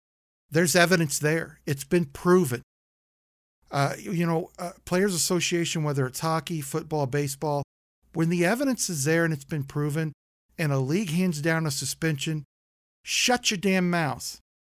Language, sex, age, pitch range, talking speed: English, male, 50-69, 135-170 Hz, 150 wpm